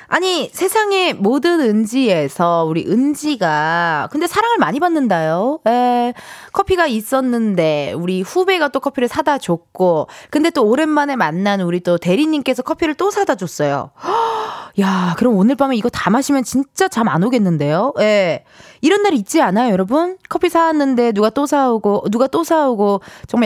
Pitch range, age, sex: 190-300 Hz, 20-39, female